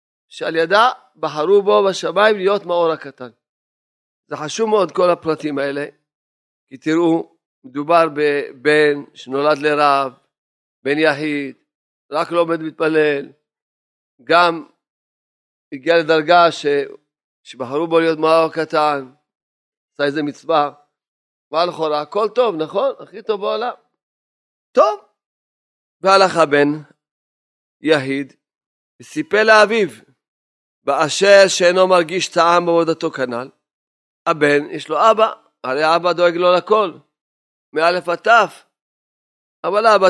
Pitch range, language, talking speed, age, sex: 140-175 Hz, Hebrew, 105 wpm, 40-59, male